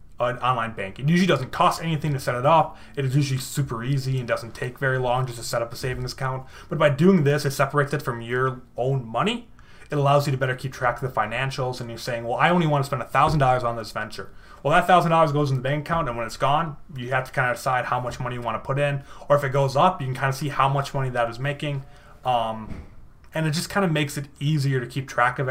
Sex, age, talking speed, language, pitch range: male, 20-39, 285 wpm, English, 120-145 Hz